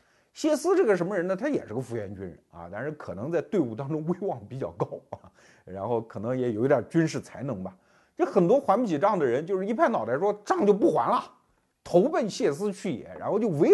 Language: Chinese